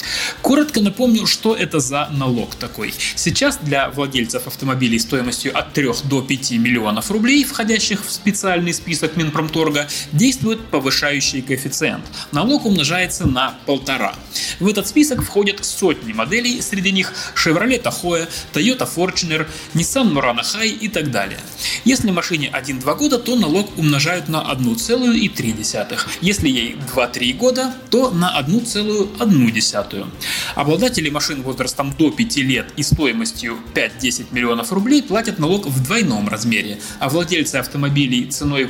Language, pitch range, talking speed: Russian, 130-205 Hz, 130 wpm